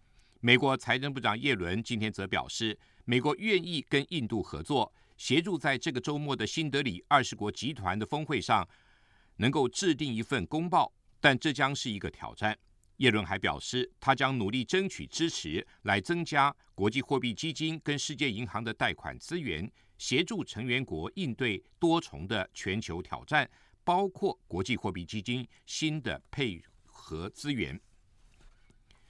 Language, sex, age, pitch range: German, male, 50-69, 100-145 Hz